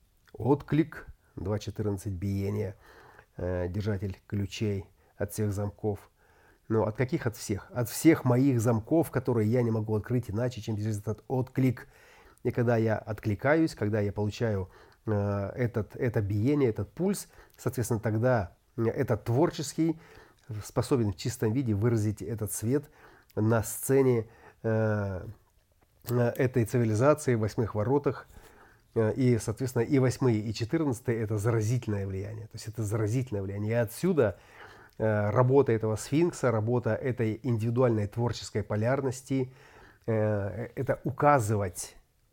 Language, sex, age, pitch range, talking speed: Russian, male, 30-49, 105-125 Hz, 120 wpm